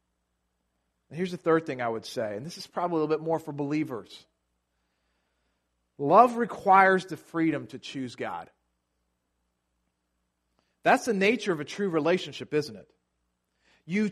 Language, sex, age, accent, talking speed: English, male, 40-59, American, 145 wpm